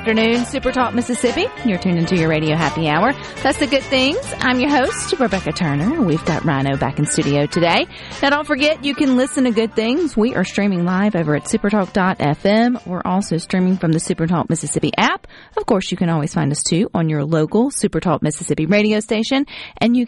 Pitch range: 160-235 Hz